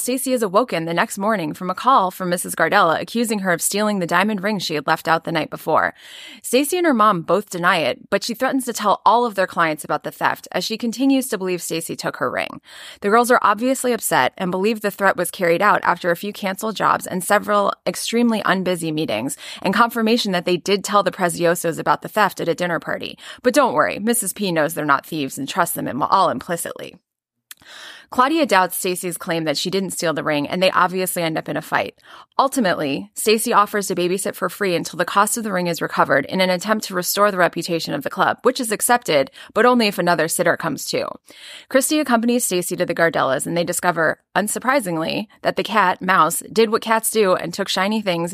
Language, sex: English, female